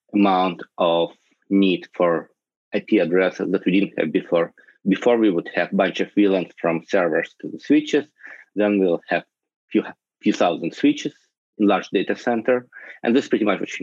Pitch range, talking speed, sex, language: 90-105 Hz, 180 wpm, male, English